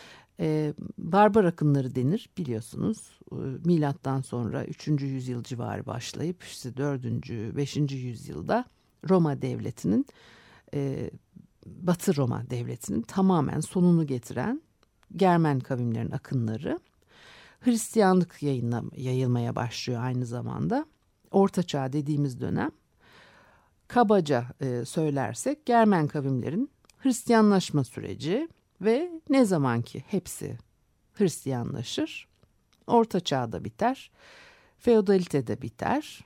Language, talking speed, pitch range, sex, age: Turkish, 85 wpm, 130-210 Hz, female, 60-79